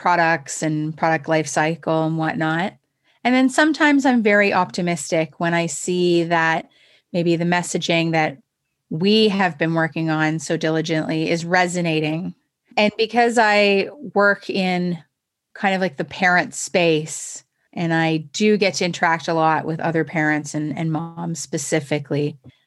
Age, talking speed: 30-49, 150 wpm